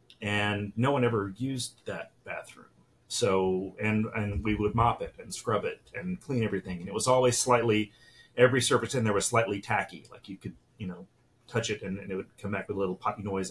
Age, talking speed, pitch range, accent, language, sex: 30-49, 220 wpm, 105-125 Hz, American, English, male